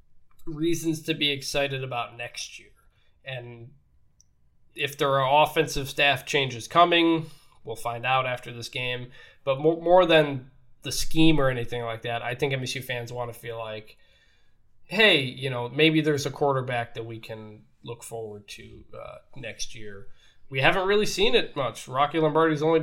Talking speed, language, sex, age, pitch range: 170 wpm, English, male, 20-39, 120-155 Hz